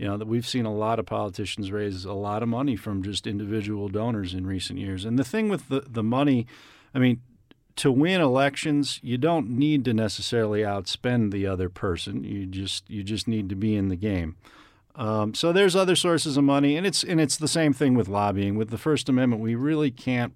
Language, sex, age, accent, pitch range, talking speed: English, male, 40-59, American, 100-130 Hz, 220 wpm